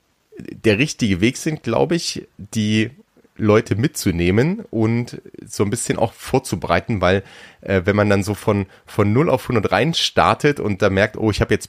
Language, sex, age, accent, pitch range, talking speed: German, male, 30-49, German, 95-115 Hz, 180 wpm